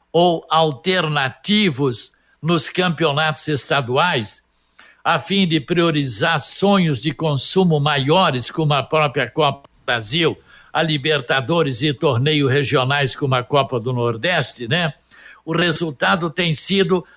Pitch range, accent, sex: 145-185 Hz, Brazilian, male